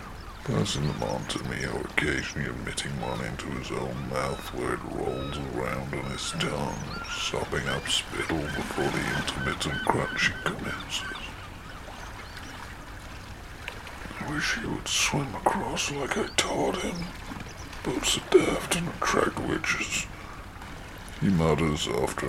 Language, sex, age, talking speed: English, female, 60-79, 125 wpm